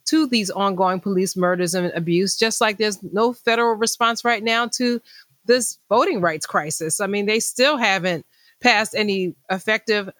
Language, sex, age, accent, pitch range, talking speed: English, female, 30-49, American, 185-225 Hz, 165 wpm